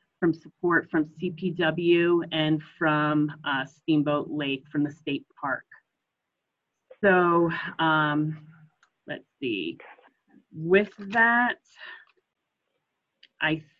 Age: 30-49